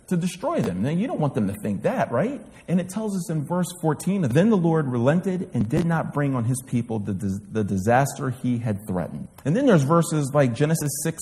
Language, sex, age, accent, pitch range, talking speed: English, male, 40-59, American, 115-165 Hz, 230 wpm